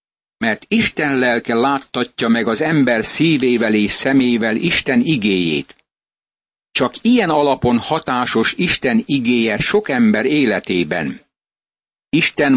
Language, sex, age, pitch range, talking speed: Hungarian, male, 60-79, 120-155 Hz, 105 wpm